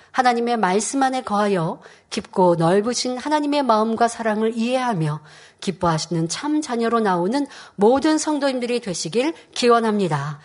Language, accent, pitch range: Korean, native, 215-265 Hz